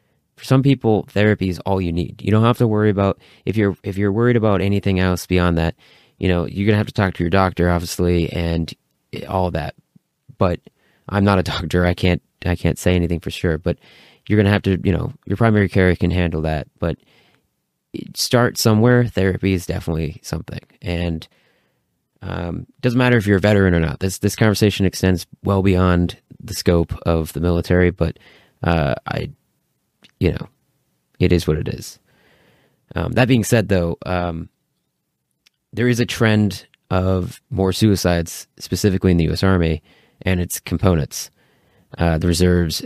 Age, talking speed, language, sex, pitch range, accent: 30-49, 180 wpm, English, male, 85-105 Hz, American